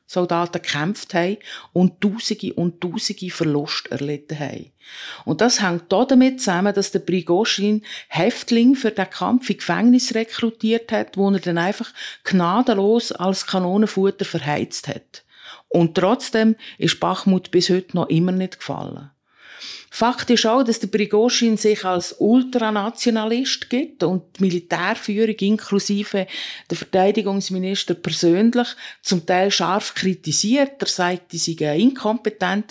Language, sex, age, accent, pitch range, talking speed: German, female, 50-69, Austrian, 175-215 Hz, 130 wpm